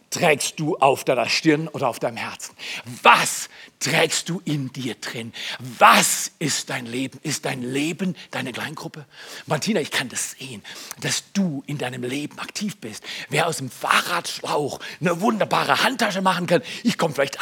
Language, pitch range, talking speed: German, 155-245 Hz, 165 wpm